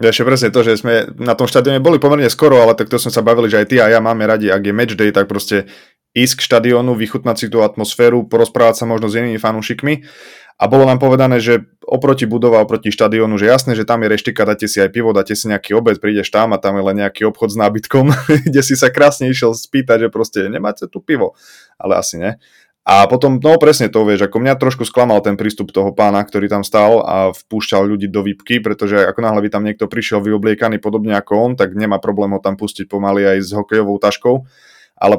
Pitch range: 100-120 Hz